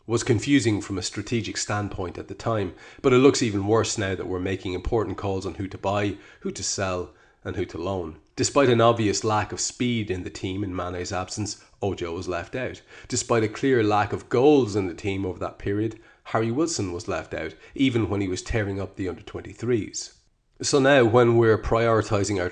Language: English